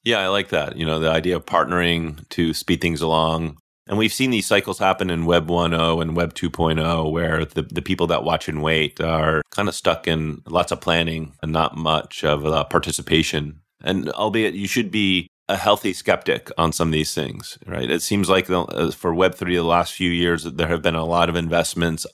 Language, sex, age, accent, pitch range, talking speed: English, male, 30-49, American, 80-90 Hz, 215 wpm